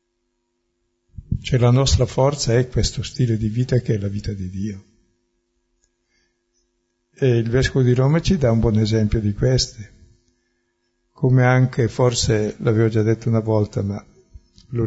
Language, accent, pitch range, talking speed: Italian, native, 105-125 Hz, 150 wpm